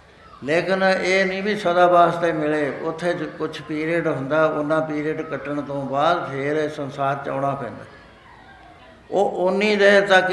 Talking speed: 150 wpm